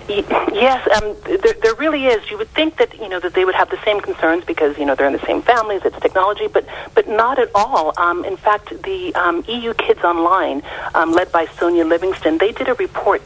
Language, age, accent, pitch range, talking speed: English, 40-59, American, 170-275 Hz, 230 wpm